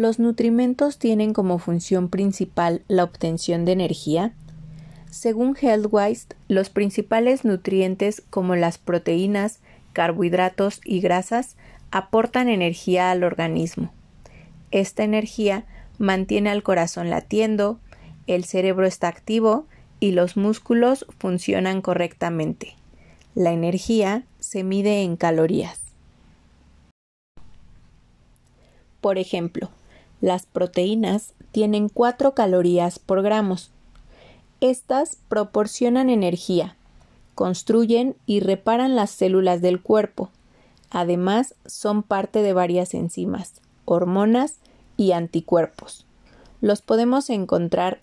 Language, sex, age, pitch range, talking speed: Spanish, female, 30-49, 175-220 Hz, 95 wpm